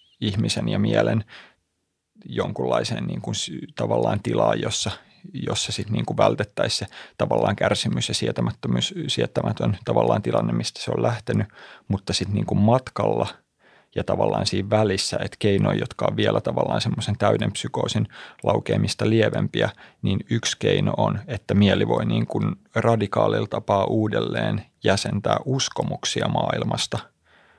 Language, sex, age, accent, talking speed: Finnish, male, 30-49, native, 130 wpm